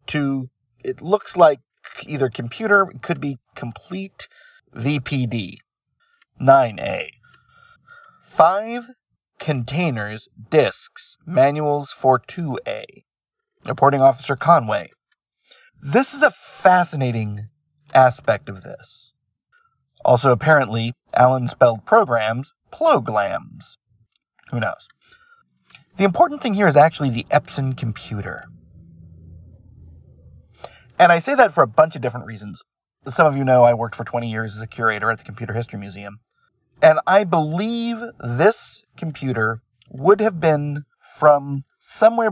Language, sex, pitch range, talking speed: English, male, 120-195 Hz, 115 wpm